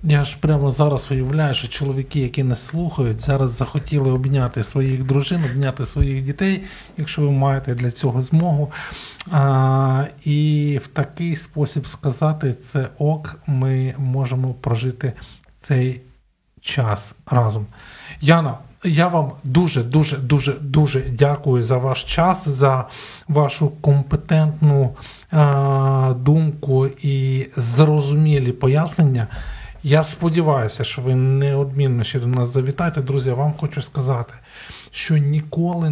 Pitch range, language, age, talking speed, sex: 130-150 Hz, Ukrainian, 40-59, 120 wpm, male